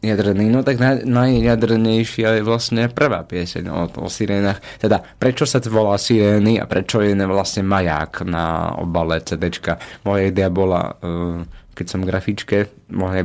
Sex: male